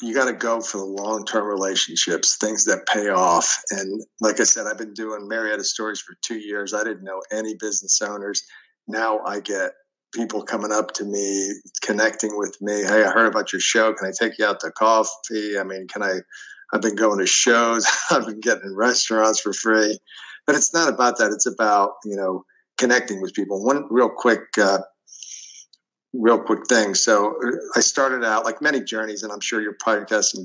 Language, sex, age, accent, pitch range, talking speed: English, male, 50-69, American, 100-115 Hz, 195 wpm